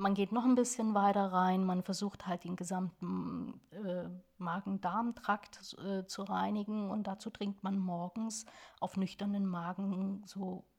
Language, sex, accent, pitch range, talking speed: German, female, German, 180-205 Hz, 145 wpm